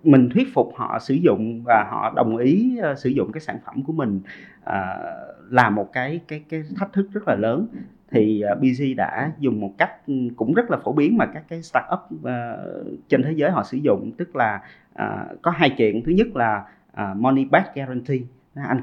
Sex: male